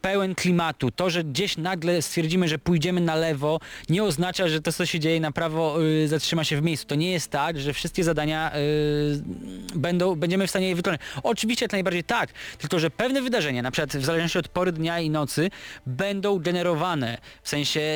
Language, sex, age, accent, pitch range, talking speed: Polish, male, 20-39, native, 145-175 Hz, 195 wpm